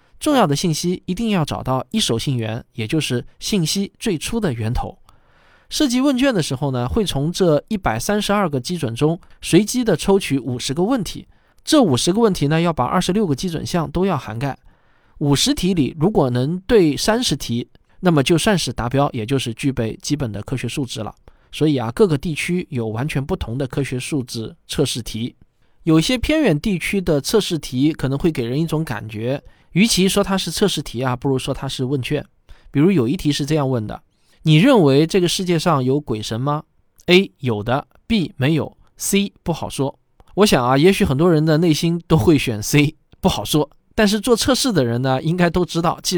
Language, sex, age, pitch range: Chinese, male, 20-39, 130-180 Hz